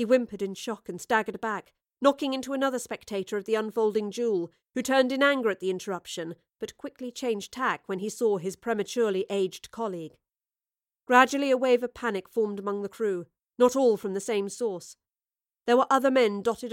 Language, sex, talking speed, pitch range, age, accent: English, female, 190 wpm, 195-245 Hz, 40-59, British